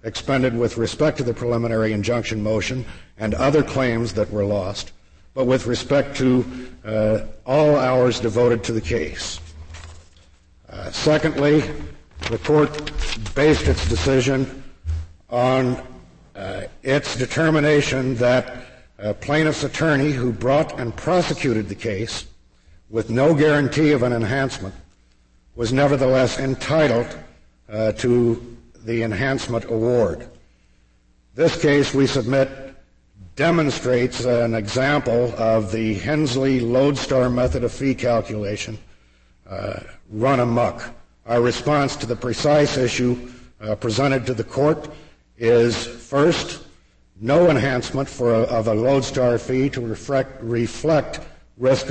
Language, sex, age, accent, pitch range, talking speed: English, male, 60-79, American, 110-135 Hz, 120 wpm